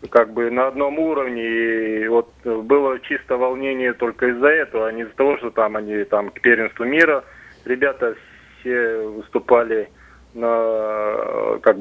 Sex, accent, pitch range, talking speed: male, native, 115-135 Hz, 145 wpm